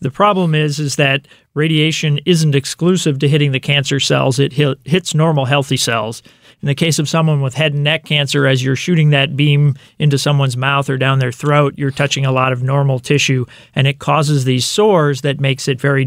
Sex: male